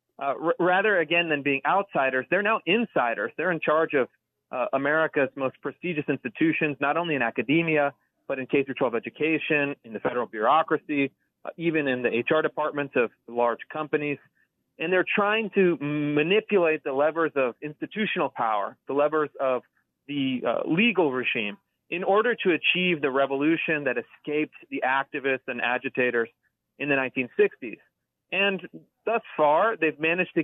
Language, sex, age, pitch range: English, male, 30-49, 135-170 Hz